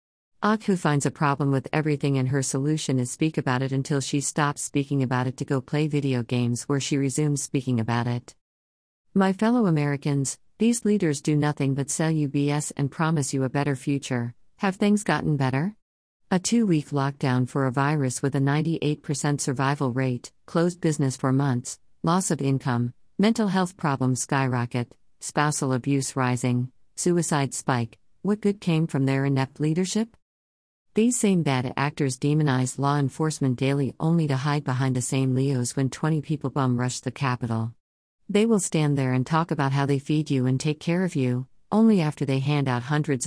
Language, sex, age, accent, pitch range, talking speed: English, female, 50-69, American, 130-155 Hz, 180 wpm